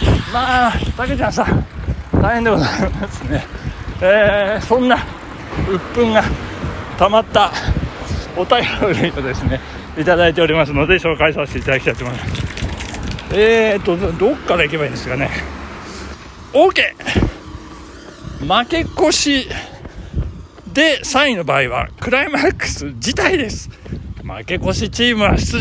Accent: native